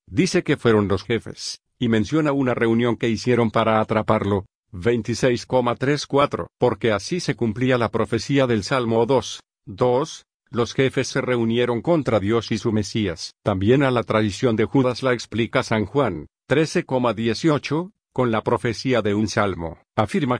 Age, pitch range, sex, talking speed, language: 50-69, 110-130 Hz, male, 150 wpm, Spanish